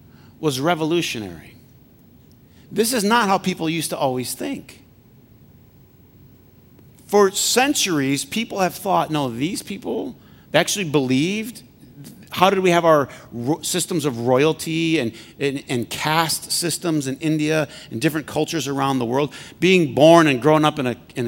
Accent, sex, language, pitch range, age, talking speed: American, male, English, 130-175 Hz, 50-69, 145 wpm